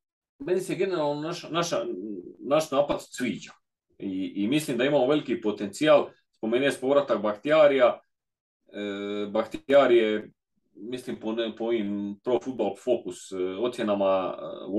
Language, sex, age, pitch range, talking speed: Croatian, male, 30-49, 100-130 Hz, 120 wpm